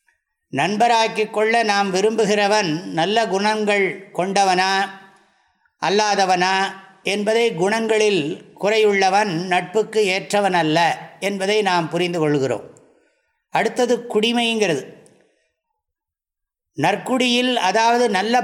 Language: English